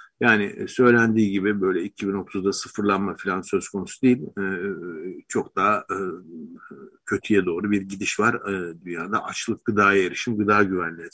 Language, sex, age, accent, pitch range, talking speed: Turkish, male, 50-69, native, 95-120 Hz, 125 wpm